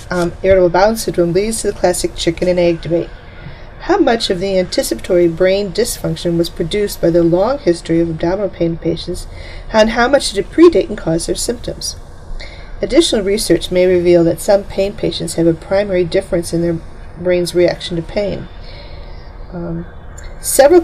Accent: American